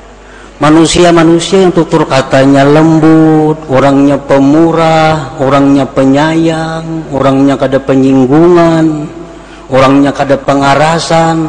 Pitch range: 145-180 Hz